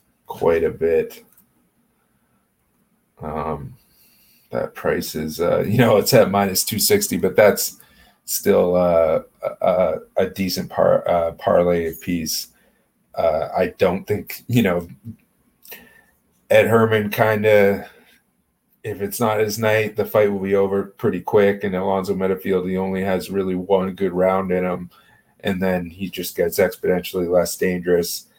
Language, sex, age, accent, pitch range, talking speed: English, male, 30-49, American, 90-120 Hz, 140 wpm